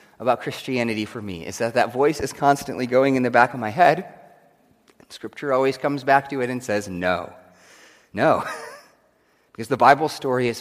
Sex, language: male, English